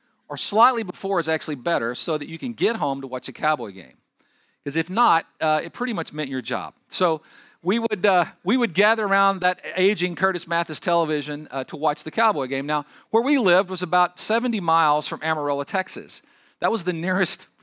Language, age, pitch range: English, 50-69, 140-195 Hz